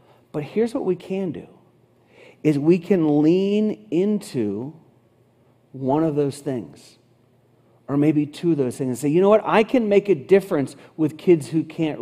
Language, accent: English, American